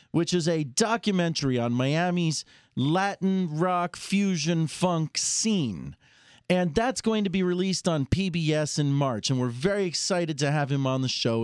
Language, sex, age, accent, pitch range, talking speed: English, male, 40-59, American, 125-180 Hz, 165 wpm